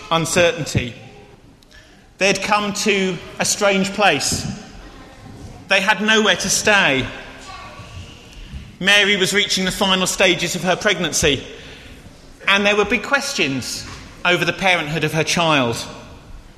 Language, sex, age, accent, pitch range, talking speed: English, male, 30-49, British, 165-210 Hz, 115 wpm